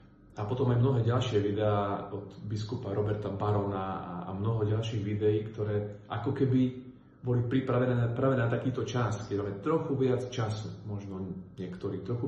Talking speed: 145 wpm